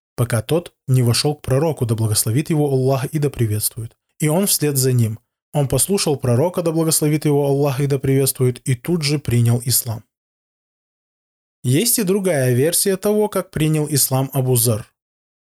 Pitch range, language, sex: 125-160 Hz, Russian, male